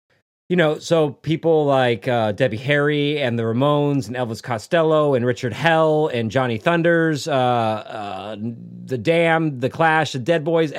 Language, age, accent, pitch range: English, 30-49, American, 120-165 Hz